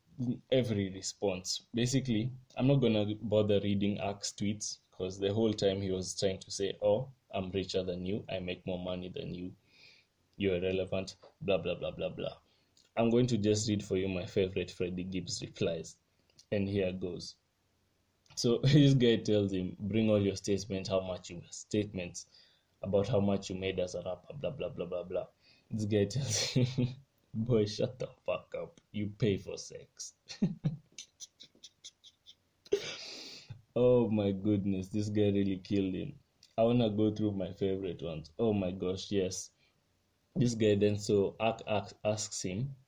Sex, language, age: male, English, 20-39